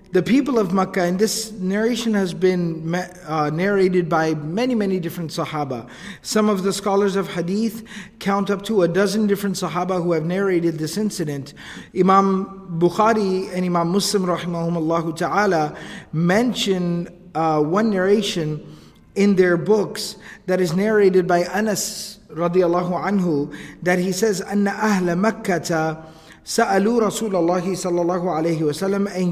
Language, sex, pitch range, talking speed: English, male, 170-205 Hz, 135 wpm